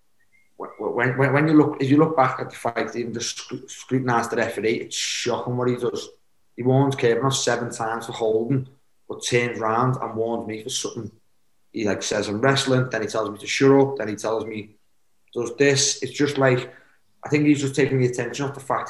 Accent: British